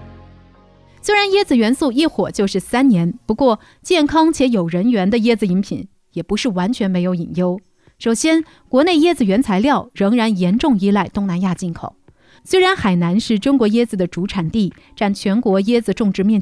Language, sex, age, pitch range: Chinese, female, 30-49, 190-275 Hz